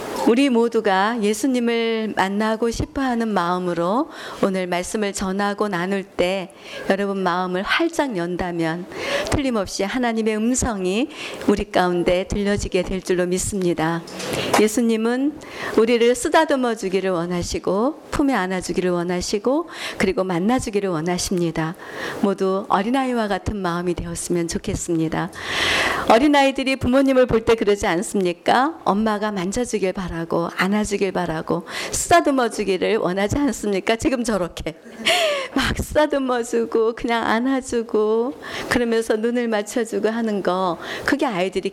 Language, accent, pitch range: Korean, native, 185-250 Hz